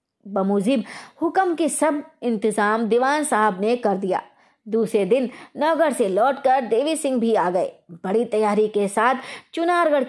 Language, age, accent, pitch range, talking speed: Hindi, 20-39, native, 210-290 Hz, 145 wpm